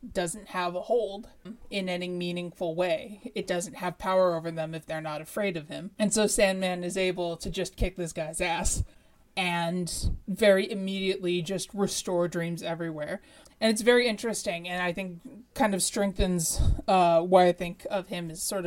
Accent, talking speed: American, 180 wpm